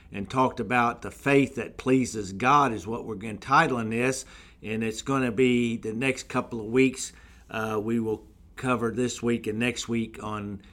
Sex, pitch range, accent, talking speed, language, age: male, 115-140 Hz, American, 185 wpm, English, 50-69